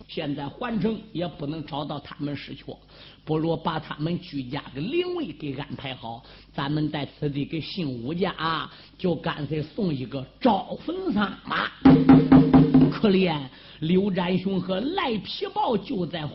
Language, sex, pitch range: Chinese, male, 145-215 Hz